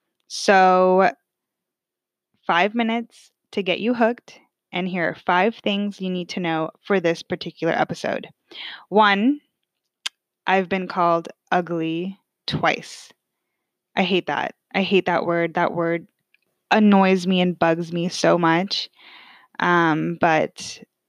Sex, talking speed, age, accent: female, 125 wpm, 10-29, American